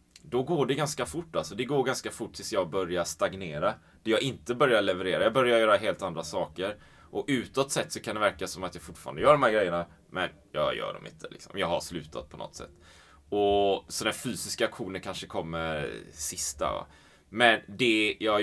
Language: Swedish